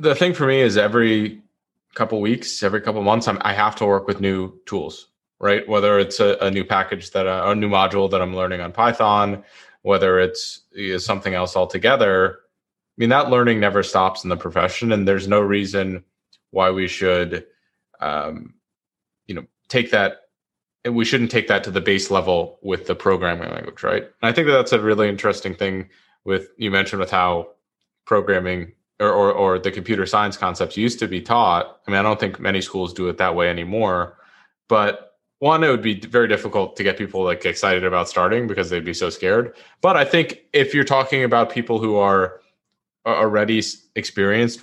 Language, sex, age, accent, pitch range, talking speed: English, male, 20-39, American, 95-120 Hz, 195 wpm